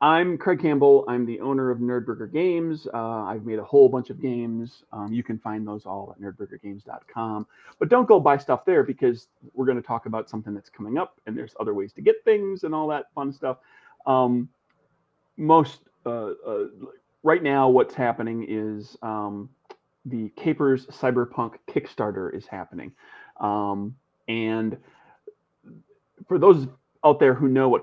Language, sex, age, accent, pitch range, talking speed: English, male, 30-49, American, 110-135 Hz, 170 wpm